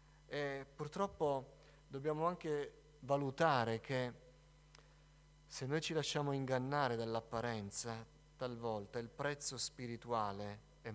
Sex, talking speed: male, 90 wpm